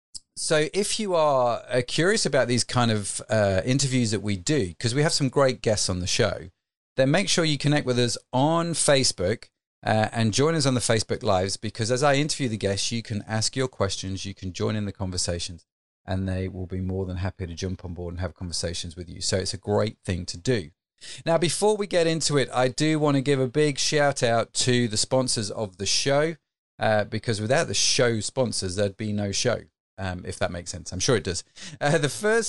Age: 30-49